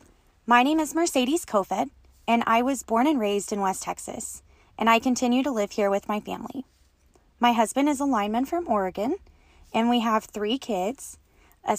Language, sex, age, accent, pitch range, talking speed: English, female, 20-39, American, 200-240 Hz, 185 wpm